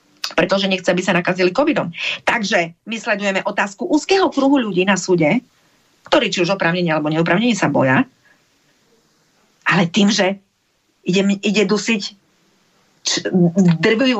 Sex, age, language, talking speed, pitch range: female, 40-59, Slovak, 125 wpm, 180-245 Hz